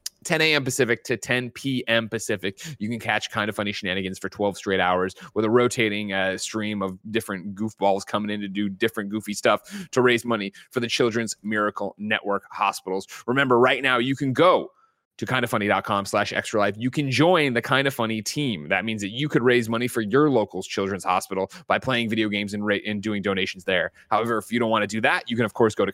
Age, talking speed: 30-49, 225 wpm